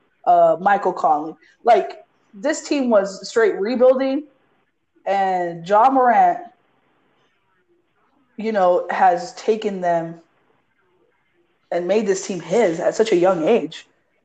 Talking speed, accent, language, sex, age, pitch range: 115 wpm, American, English, female, 20-39, 190-255 Hz